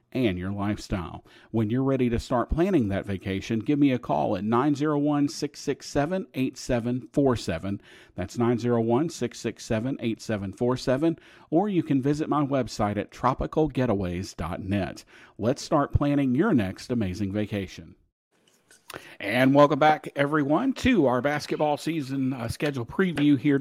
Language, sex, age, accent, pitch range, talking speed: English, male, 50-69, American, 115-145 Hz, 115 wpm